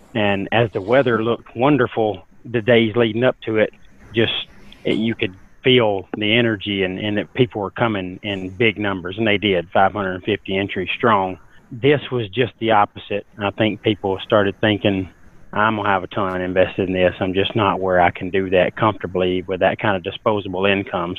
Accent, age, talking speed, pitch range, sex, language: American, 30-49, 185 wpm, 95-110 Hz, male, English